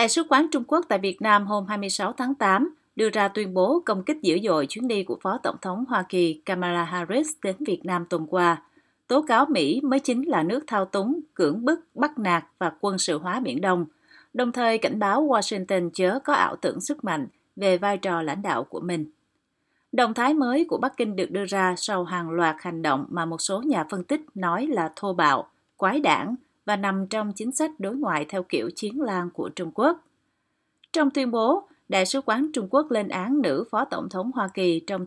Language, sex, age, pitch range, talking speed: Vietnamese, female, 30-49, 180-265 Hz, 220 wpm